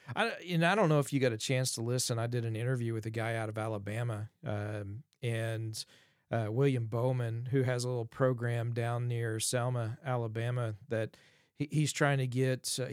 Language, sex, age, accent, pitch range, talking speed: English, male, 40-59, American, 120-135 Hz, 190 wpm